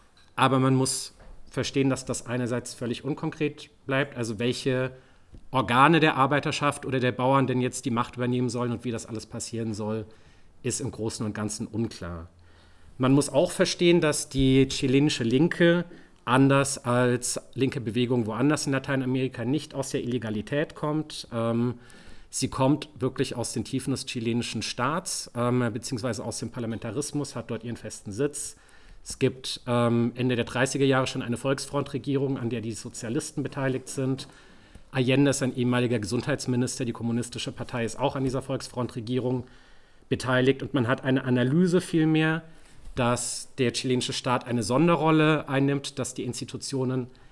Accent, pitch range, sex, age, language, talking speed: German, 115-135 Hz, male, 40-59, German, 150 wpm